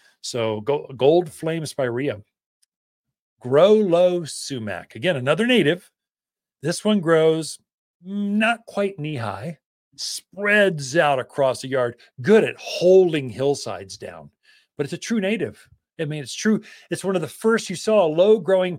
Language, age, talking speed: English, 40-59, 145 wpm